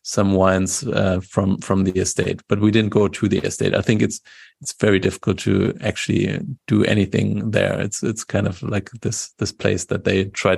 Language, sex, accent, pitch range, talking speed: English, male, German, 100-110 Hz, 205 wpm